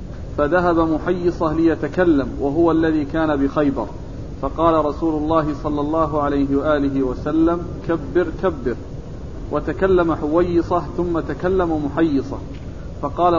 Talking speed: 105 wpm